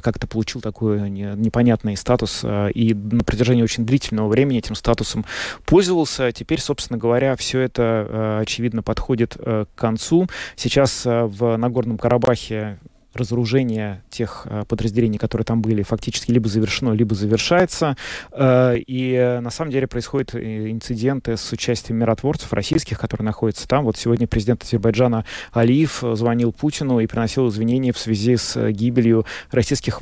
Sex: male